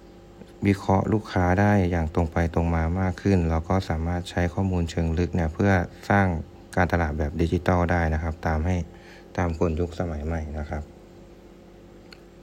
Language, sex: Thai, male